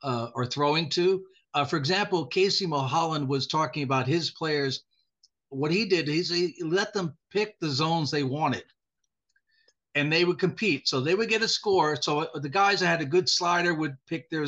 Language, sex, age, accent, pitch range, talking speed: English, male, 60-79, American, 145-190 Hz, 195 wpm